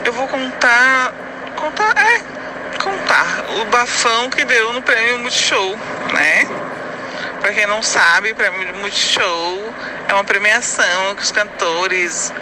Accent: Brazilian